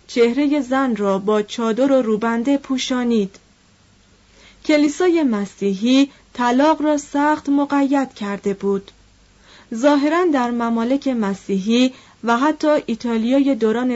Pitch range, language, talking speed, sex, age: 205-265 Hz, Persian, 105 wpm, female, 30-49